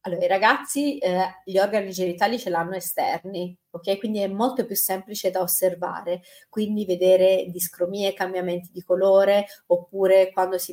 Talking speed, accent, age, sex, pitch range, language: 150 wpm, native, 30-49, female, 180-215 Hz, Italian